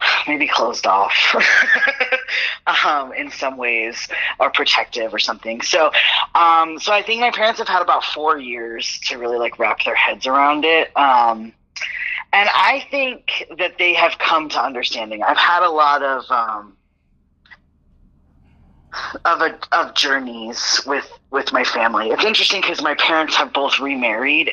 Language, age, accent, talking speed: English, 20-39, American, 150 wpm